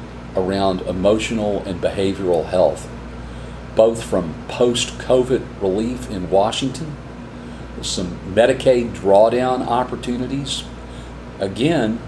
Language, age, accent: English, 40-59, American